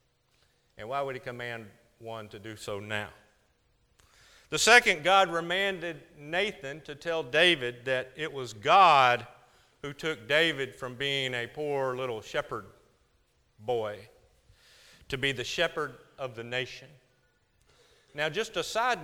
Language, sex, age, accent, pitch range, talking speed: English, male, 50-69, American, 120-165 Hz, 135 wpm